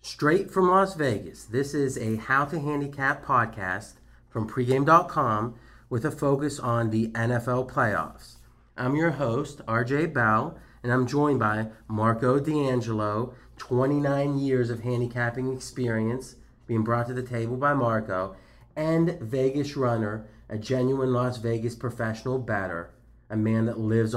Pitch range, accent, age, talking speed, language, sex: 115-145 Hz, American, 30-49, 140 wpm, English, male